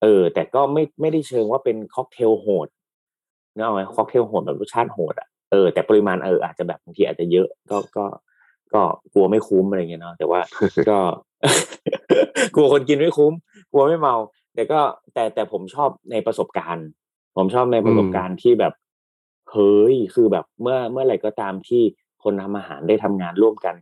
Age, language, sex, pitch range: 30-49, Thai, male, 95-115 Hz